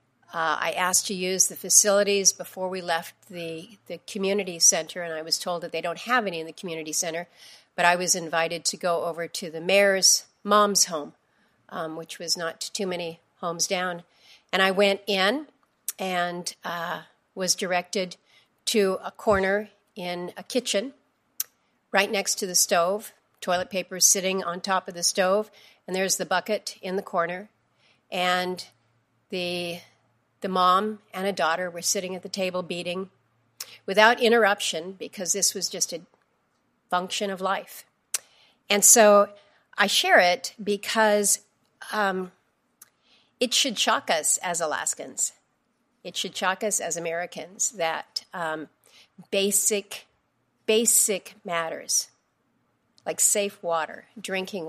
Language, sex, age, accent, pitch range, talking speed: English, female, 40-59, American, 175-205 Hz, 145 wpm